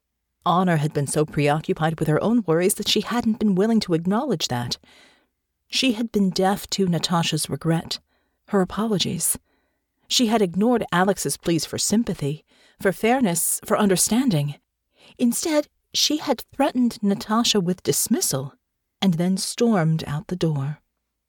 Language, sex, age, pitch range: English, female, 40-59, 160-210 Hz